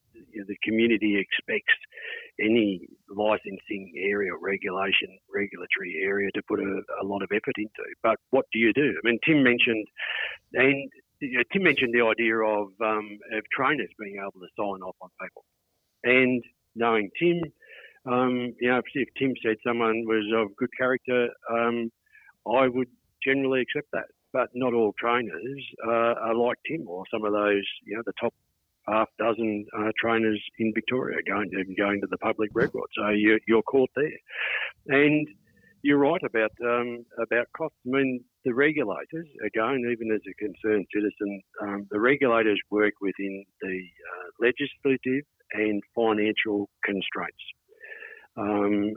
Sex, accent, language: male, Australian, English